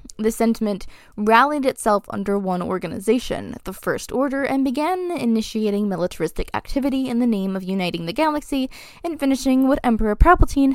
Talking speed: 150 wpm